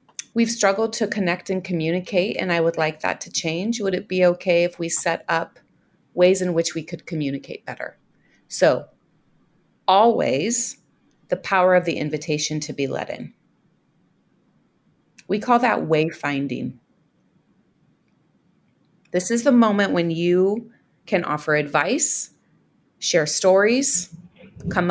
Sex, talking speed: female, 130 wpm